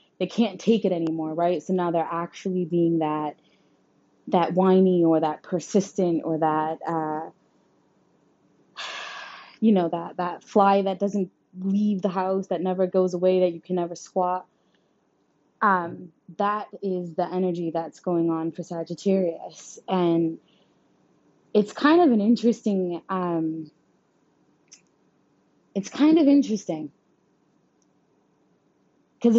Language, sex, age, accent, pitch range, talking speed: English, female, 20-39, American, 170-210 Hz, 125 wpm